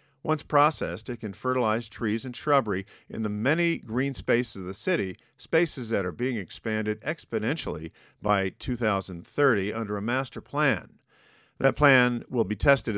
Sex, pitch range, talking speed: male, 105-135 Hz, 155 wpm